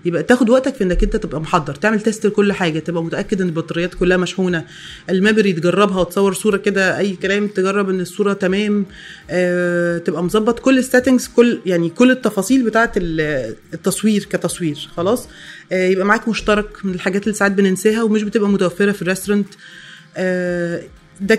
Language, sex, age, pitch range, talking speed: Arabic, female, 20-39, 185-235 Hz, 165 wpm